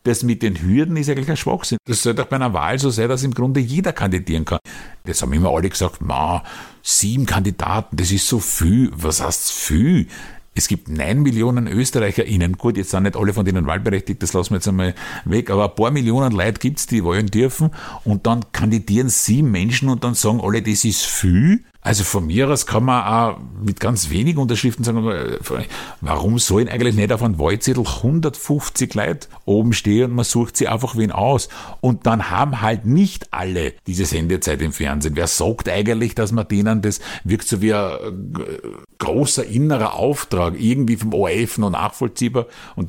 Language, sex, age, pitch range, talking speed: German, male, 50-69, 95-120 Hz, 190 wpm